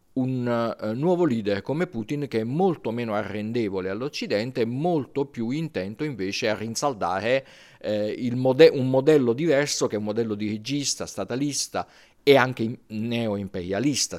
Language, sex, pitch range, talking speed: Italian, male, 100-135 Hz, 140 wpm